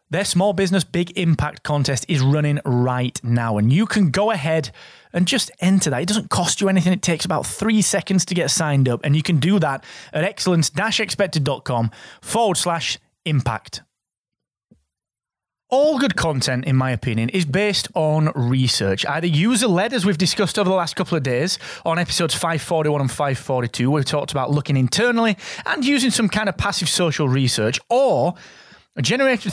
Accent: British